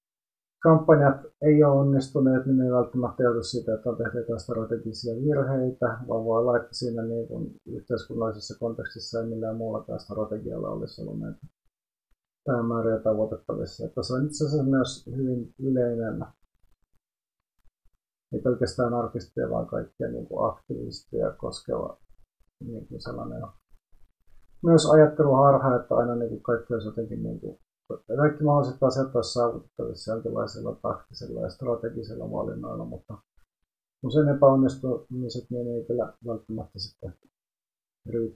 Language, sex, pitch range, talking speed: Finnish, male, 110-130 Hz, 120 wpm